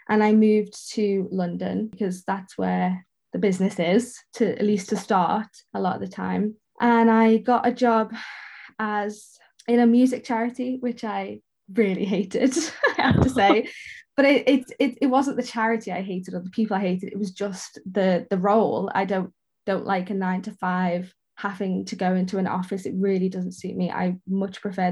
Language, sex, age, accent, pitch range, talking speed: English, female, 10-29, British, 185-225 Hz, 195 wpm